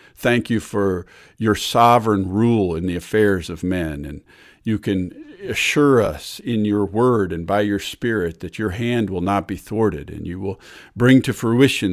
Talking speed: 180 wpm